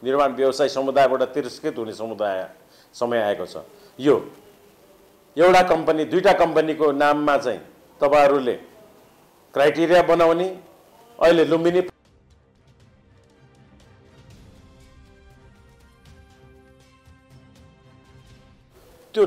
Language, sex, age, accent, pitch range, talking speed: English, male, 50-69, Indian, 115-165 Hz, 80 wpm